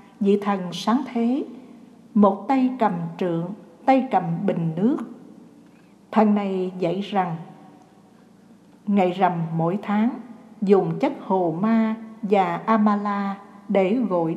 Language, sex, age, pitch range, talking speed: Vietnamese, female, 60-79, 185-240 Hz, 115 wpm